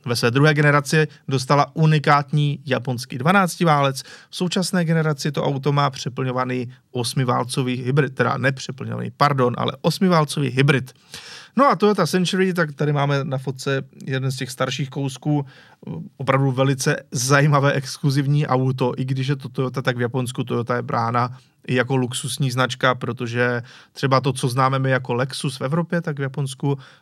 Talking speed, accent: 155 wpm, native